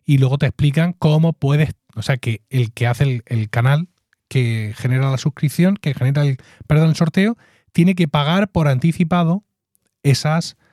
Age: 30-49